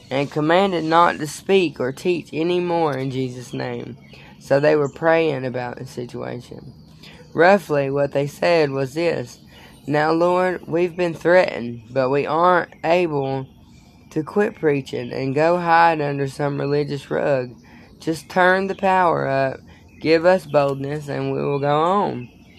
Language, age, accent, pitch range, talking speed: English, 10-29, American, 135-165 Hz, 150 wpm